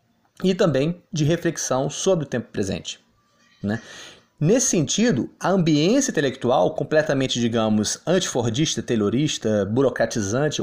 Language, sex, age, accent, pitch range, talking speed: Portuguese, male, 30-49, Brazilian, 125-195 Hz, 105 wpm